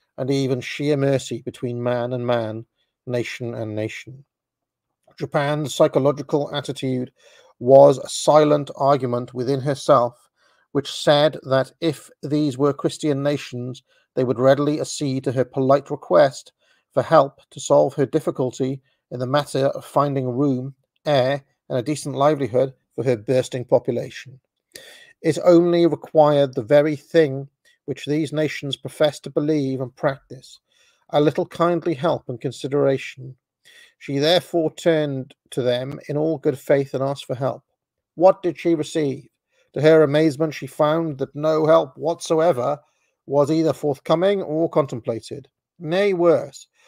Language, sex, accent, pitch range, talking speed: English, male, British, 135-160 Hz, 140 wpm